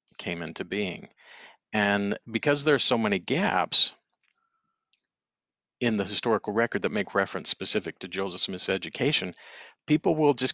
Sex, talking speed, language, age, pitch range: male, 140 wpm, English, 50-69, 105-130 Hz